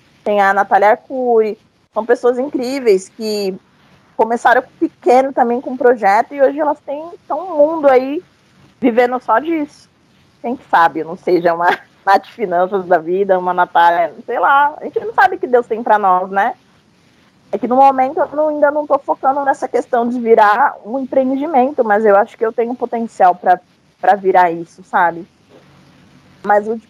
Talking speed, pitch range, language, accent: 170 wpm, 195-250 Hz, Portuguese, Brazilian